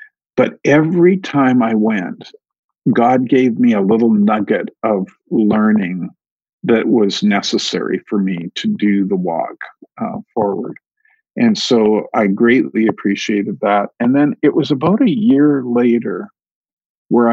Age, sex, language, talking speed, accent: 50-69, male, English, 135 wpm, American